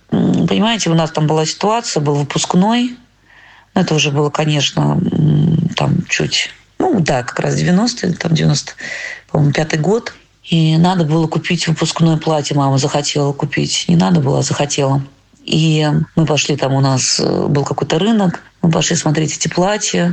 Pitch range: 150-175 Hz